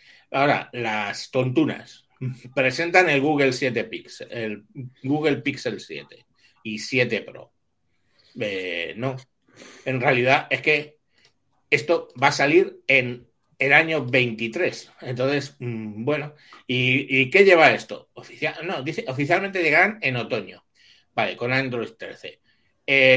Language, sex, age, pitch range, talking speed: Spanish, male, 60-79, 120-150 Hz, 125 wpm